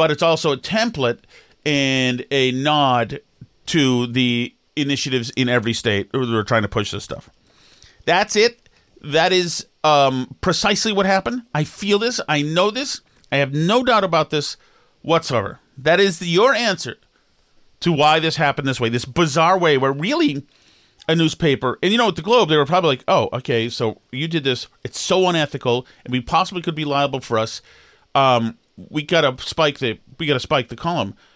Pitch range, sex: 115-155 Hz, male